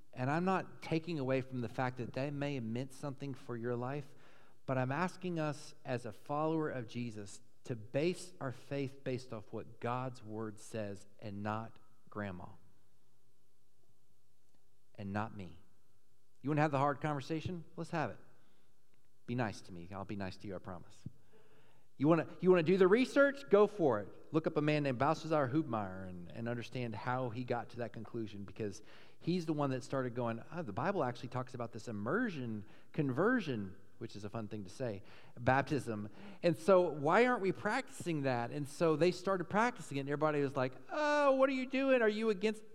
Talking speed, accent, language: 195 wpm, American, English